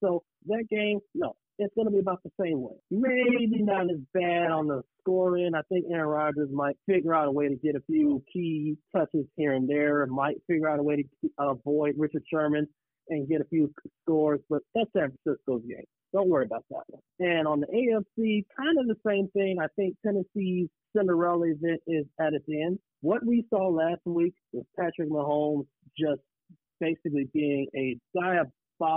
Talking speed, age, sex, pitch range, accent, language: 195 wpm, 40-59, male, 150-195 Hz, American, English